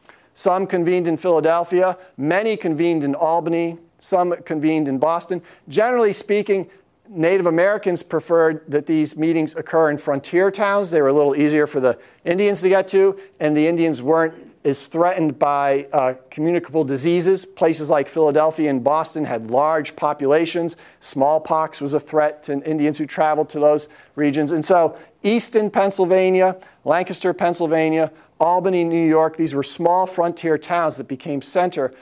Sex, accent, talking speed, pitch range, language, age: male, American, 150 wpm, 150-185 Hz, English, 50-69